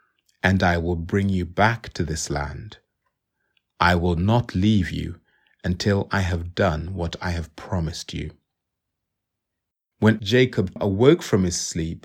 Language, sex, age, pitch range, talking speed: English, male, 30-49, 95-120 Hz, 145 wpm